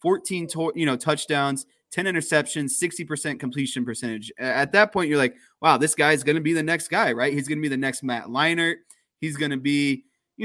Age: 20-39